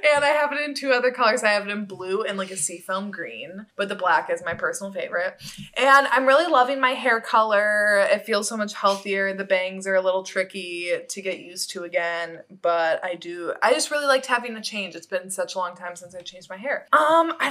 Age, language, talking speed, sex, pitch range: 20-39, English, 245 wpm, female, 180-230 Hz